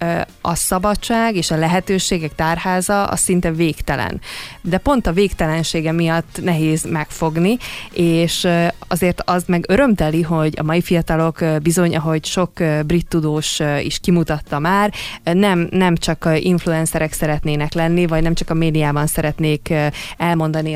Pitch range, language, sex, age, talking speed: 155-180 Hz, Hungarian, female, 20-39, 135 wpm